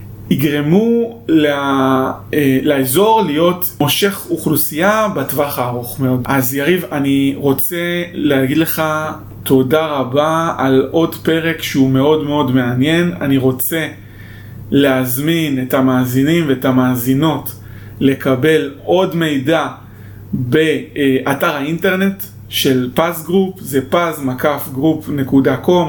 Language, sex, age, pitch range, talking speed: Hebrew, male, 30-49, 130-165 Hz, 90 wpm